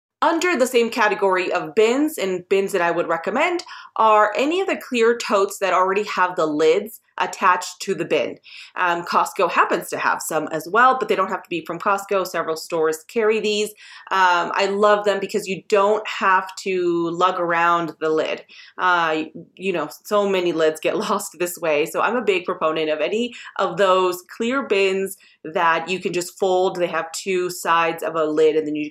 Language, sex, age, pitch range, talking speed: English, female, 30-49, 160-210 Hz, 200 wpm